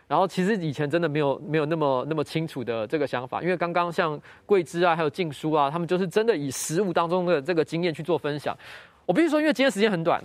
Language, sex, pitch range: Chinese, male, 140-185 Hz